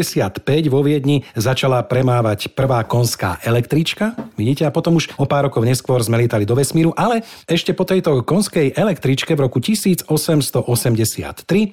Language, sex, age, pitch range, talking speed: Slovak, male, 40-59, 115-145 Hz, 140 wpm